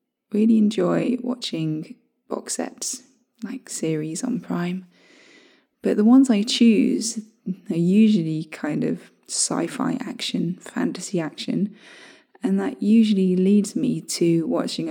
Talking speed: 120 wpm